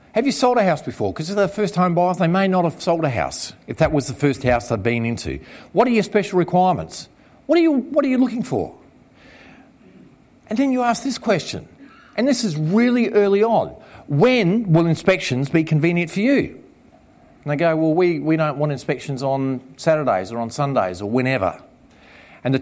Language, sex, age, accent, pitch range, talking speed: English, male, 50-69, Australian, 160-240 Hz, 210 wpm